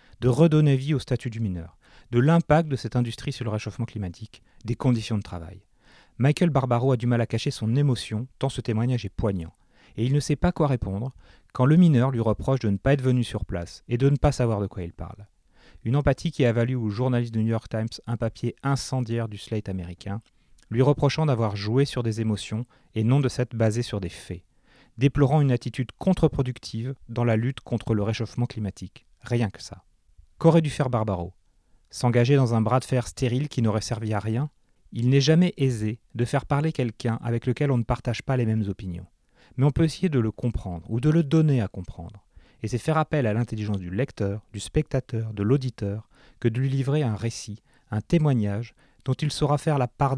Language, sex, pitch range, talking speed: French, male, 105-135 Hz, 215 wpm